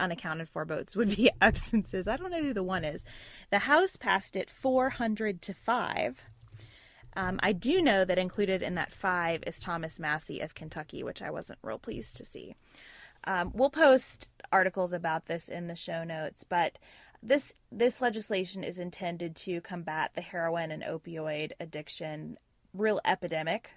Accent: American